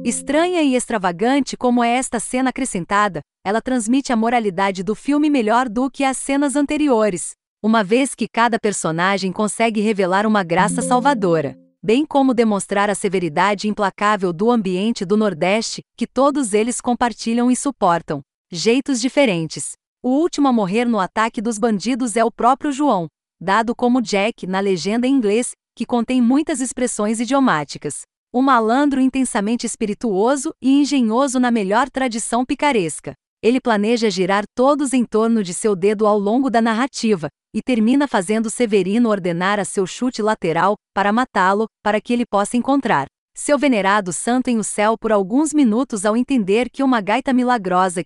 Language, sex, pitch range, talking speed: Portuguese, female, 205-255 Hz, 155 wpm